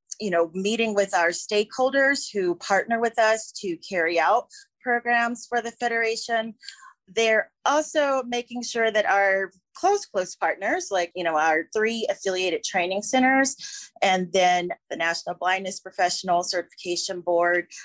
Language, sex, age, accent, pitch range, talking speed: English, female, 30-49, American, 180-235 Hz, 140 wpm